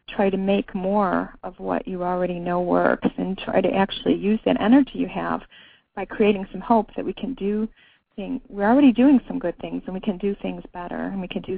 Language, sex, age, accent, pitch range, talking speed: English, female, 30-49, American, 195-240 Hz, 230 wpm